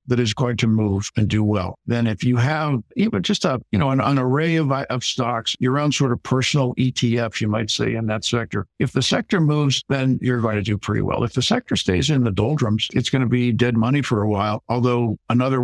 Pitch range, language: 110-135 Hz, English